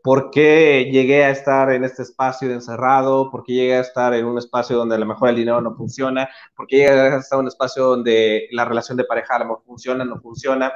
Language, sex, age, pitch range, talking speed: Spanish, male, 30-49, 120-160 Hz, 245 wpm